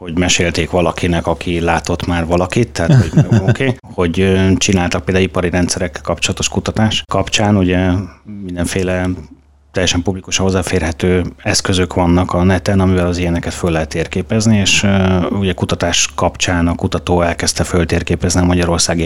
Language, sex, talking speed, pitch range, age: Hungarian, male, 140 wpm, 85-95 Hz, 30-49